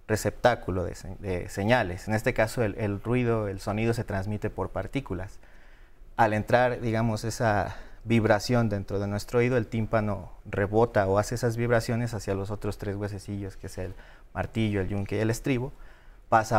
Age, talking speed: 30-49, 165 wpm